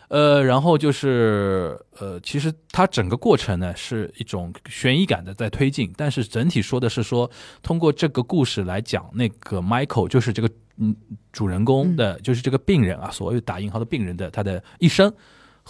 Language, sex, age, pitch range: Chinese, male, 20-39, 100-130 Hz